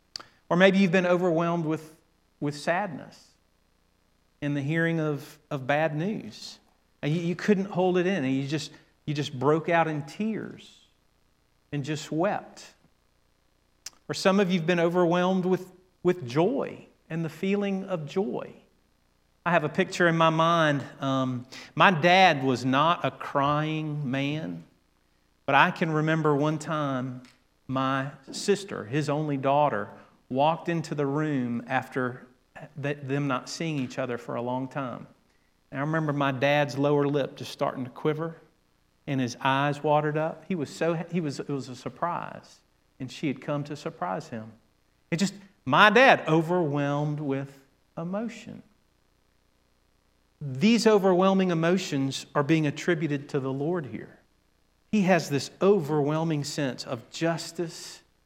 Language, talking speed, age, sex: English, 150 wpm, 40-59, male